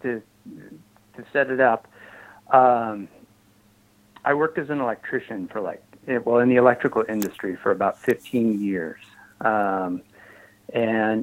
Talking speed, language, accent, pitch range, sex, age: 130 wpm, English, American, 100-115 Hz, male, 50-69